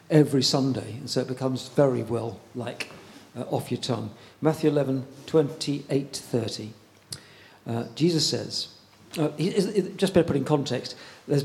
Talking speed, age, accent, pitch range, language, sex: 155 wpm, 50-69, British, 120-150 Hz, English, male